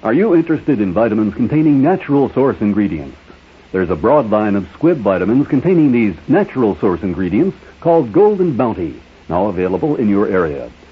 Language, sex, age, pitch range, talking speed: English, male, 60-79, 100-150 Hz, 160 wpm